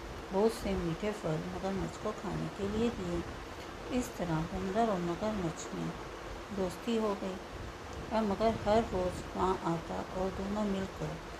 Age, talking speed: 60-79, 145 wpm